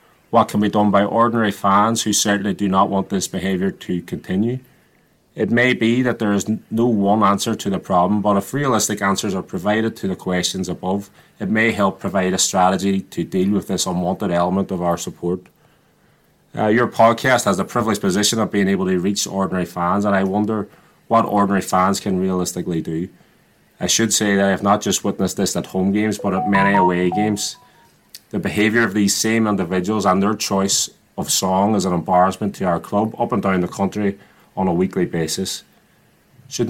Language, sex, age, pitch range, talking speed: English, male, 30-49, 95-110 Hz, 200 wpm